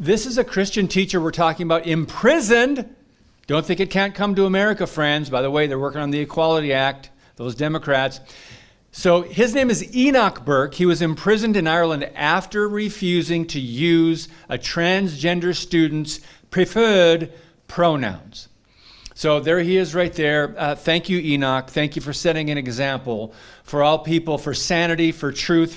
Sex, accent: male, American